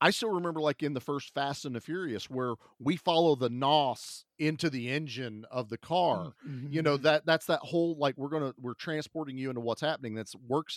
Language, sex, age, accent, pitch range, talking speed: English, male, 40-59, American, 115-150 Hz, 225 wpm